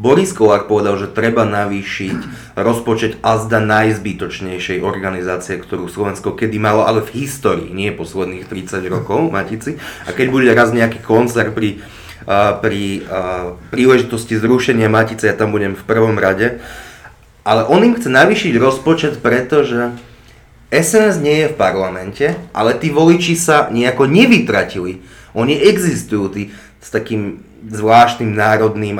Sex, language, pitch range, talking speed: male, Slovak, 100-130 Hz, 130 wpm